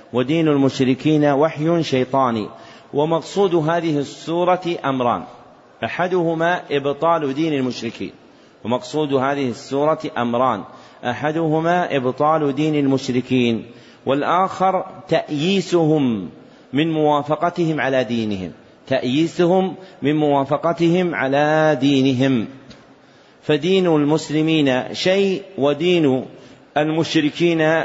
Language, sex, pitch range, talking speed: Arabic, male, 135-170 Hz, 80 wpm